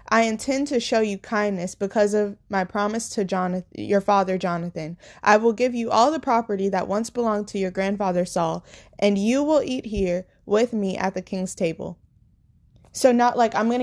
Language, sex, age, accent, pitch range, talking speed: English, female, 20-39, American, 185-225 Hz, 190 wpm